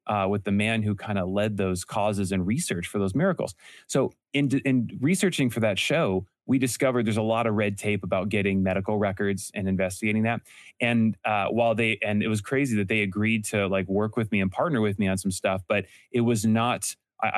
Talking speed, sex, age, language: 225 wpm, male, 20-39, English